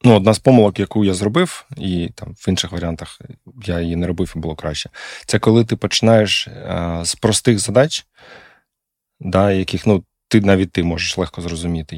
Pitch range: 95-120 Hz